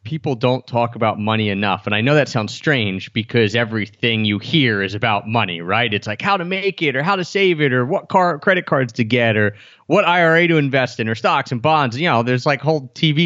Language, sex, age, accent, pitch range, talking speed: English, male, 30-49, American, 115-160 Hz, 245 wpm